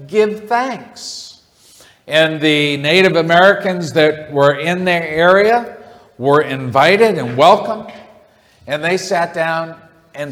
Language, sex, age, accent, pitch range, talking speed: English, male, 50-69, American, 145-195 Hz, 115 wpm